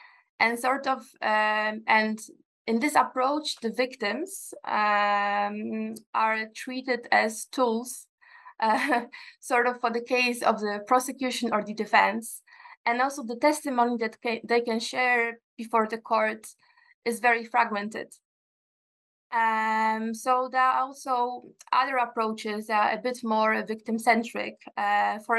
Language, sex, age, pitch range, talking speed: English, female, 20-39, 220-255 Hz, 130 wpm